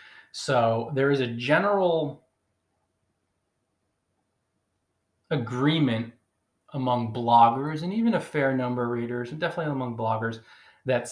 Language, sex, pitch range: English, male, 115-145 Hz